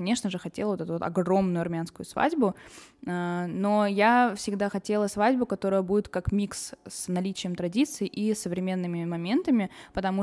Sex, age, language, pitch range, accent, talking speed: female, 20-39, Russian, 180-220 Hz, native, 145 wpm